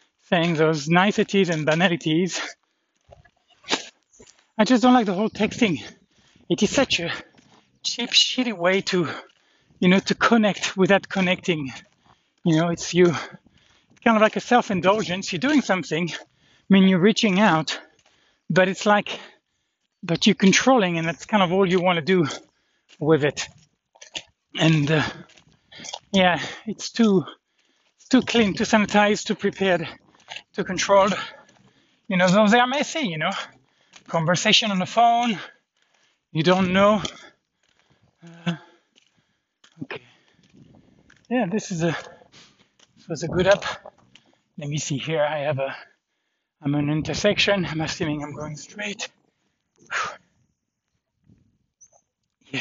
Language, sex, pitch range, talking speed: English, male, 160-210 Hz, 135 wpm